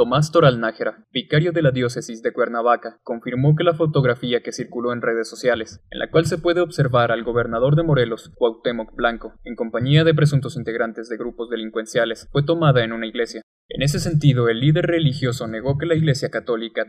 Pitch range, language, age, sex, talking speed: 115-150 Hz, Spanish, 20-39, male, 190 wpm